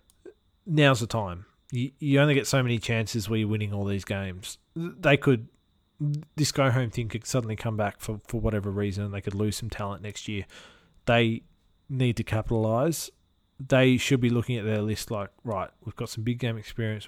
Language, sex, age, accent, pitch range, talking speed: English, male, 20-39, Australian, 105-120 Hz, 195 wpm